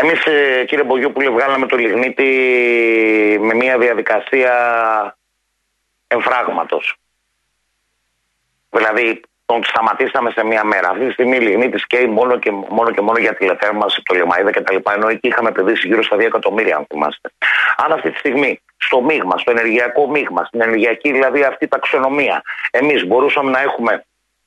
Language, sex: Greek, male